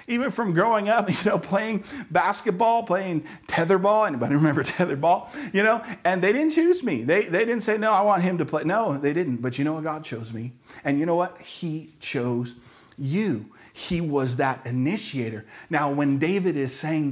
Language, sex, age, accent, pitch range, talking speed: English, male, 40-59, American, 125-175 Hz, 195 wpm